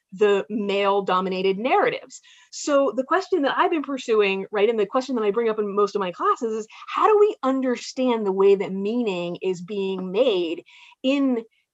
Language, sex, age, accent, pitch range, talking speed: English, female, 30-49, American, 195-275 Hz, 190 wpm